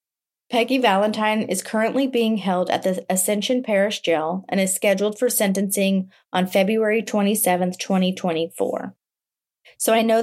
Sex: female